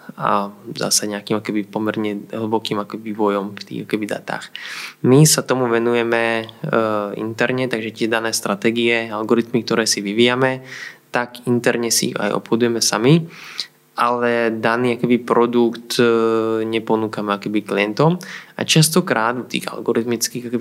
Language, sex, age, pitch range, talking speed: Slovak, male, 20-39, 110-125 Hz, 115 wpm